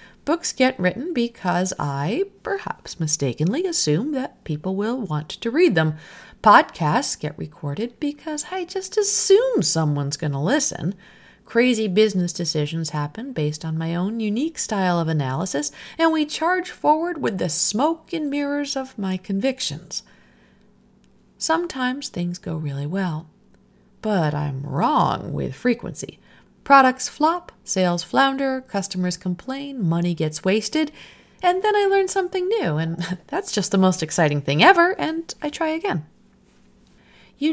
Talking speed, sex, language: 140 wpm, female, English